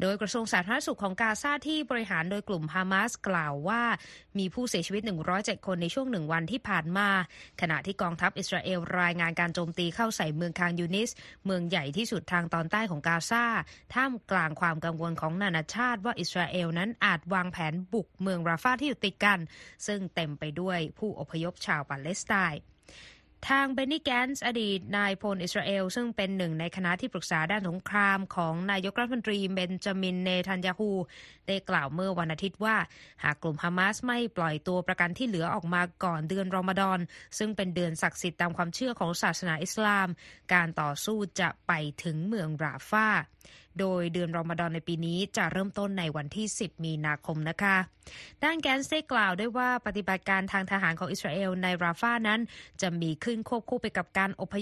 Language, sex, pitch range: Thai, female, 170-210 Hz